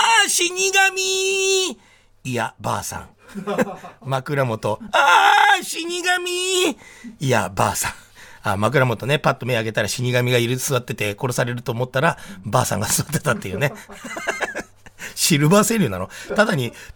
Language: Japanese